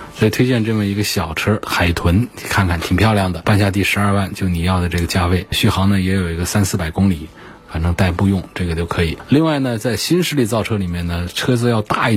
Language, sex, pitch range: Chinese, male, 90-110 Hz